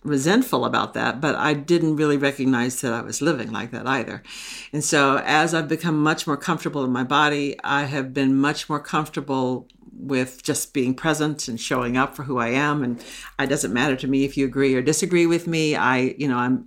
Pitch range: 135-165 Hz